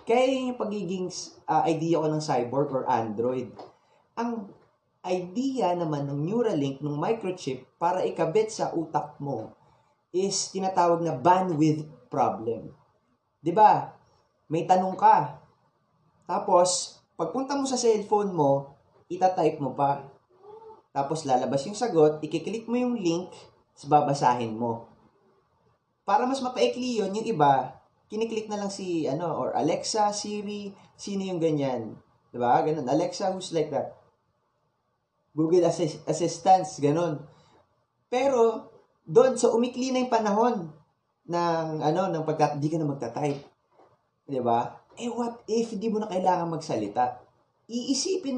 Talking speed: 130 wpm